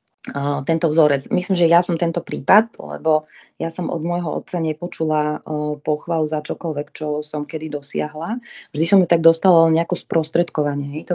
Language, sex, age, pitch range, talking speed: Slovak, female, 30-49, 150-180 Hz, 170 wpm